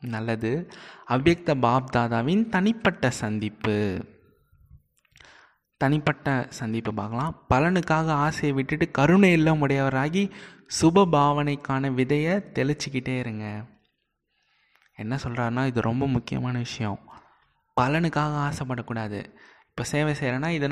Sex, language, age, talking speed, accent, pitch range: male, Tamil, 20-39, 80 wpm, native, 120-155 Hz